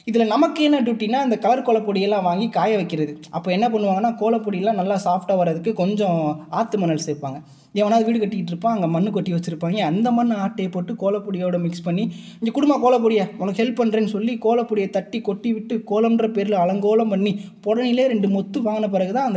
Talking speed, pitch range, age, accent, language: 165 wpm, 175-230 Hz, 20-39, native, Tamil